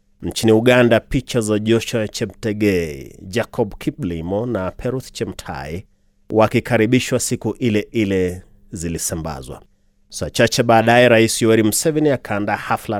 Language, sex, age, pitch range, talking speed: Swahili, male, 30-49, 100-120 Hz, 115 wpm